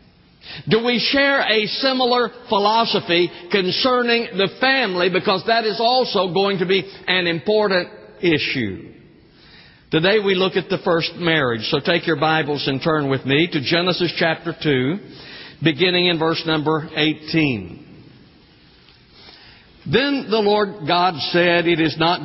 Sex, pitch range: male, 155-190 Hz